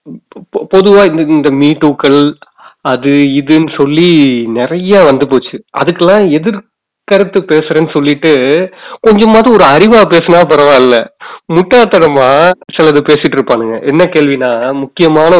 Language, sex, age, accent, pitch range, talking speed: Tamil, male, 30-49, native, 135-175 Hz, 90 wpm